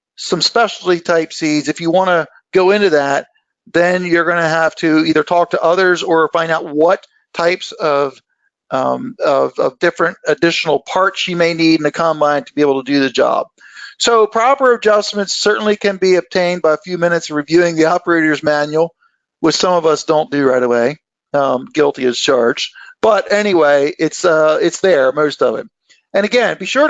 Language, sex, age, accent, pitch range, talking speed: English, male, 50-69, American, 160-210 Hz, 190 wpm